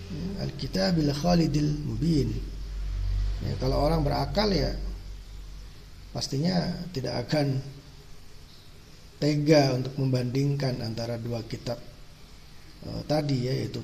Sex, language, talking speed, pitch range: male, Indonesian, 90 wpm, 125-150 Hz